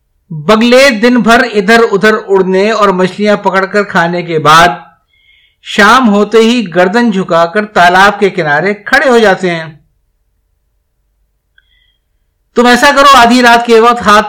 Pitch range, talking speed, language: 165-230 Hz, 145 wpm, Urdu